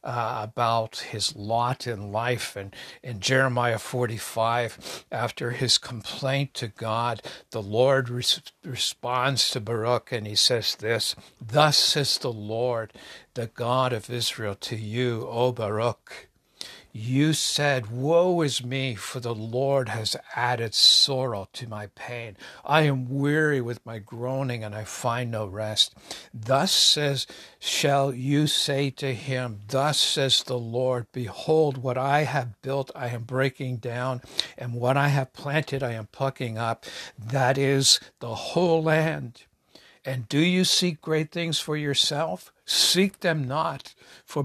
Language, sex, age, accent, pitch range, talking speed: English, male, 60-79, American, 115-140 Hz, 145 wpm